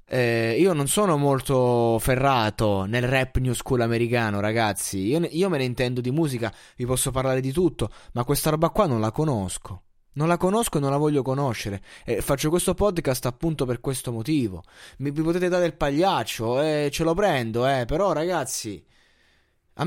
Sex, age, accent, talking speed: male, 20-39, native, 185 wpm